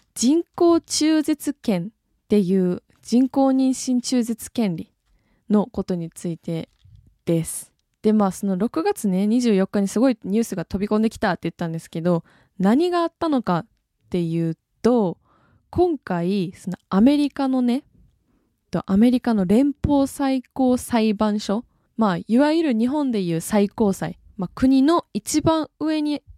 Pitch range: 190-260 Hz